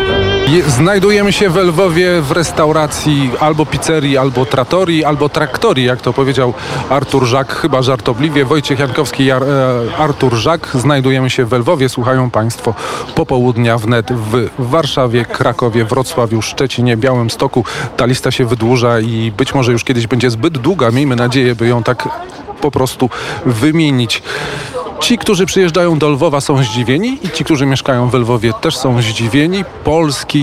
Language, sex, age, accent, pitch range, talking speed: Polish, male, 40-59, native, 125-150 Hz, 160 wpm